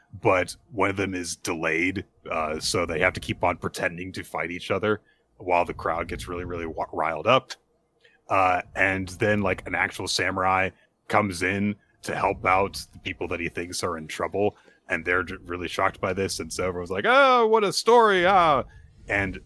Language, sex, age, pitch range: English, male, 30-49, 90-115 Hz